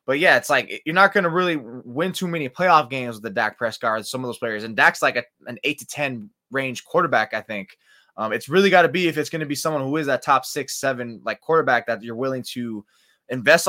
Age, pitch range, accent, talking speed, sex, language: 20-39, 140-190 Hz, American, 260 wpm, male, English